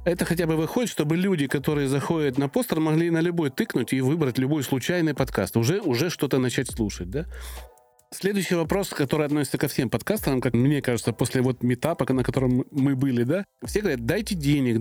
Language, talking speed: Russian, 190 wpm